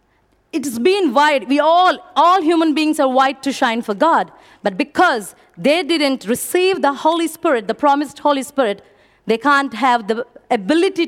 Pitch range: 250-320 Hz